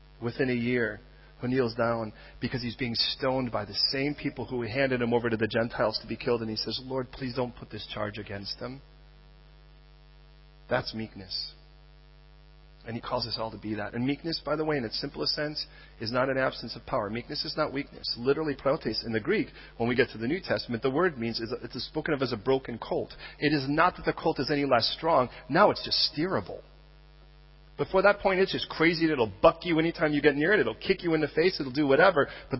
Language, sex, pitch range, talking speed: English, male, 115-160 Hz, 225 wpm